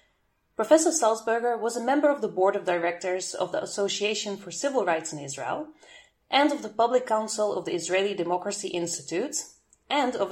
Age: 30-49